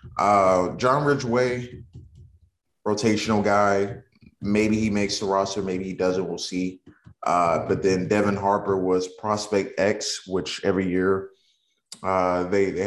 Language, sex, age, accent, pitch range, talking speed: English, male, 20-39, American, 90-110 Hz, 135 wpm